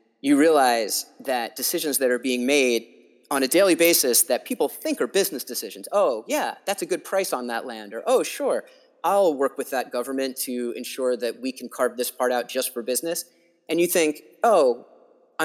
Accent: American